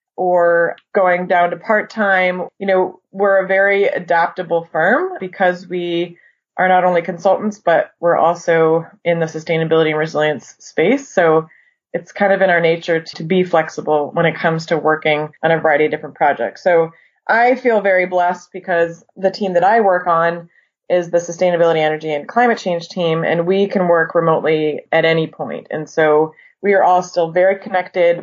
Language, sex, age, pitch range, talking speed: English, female, 20-39, 165-190 Hz, 180 wpm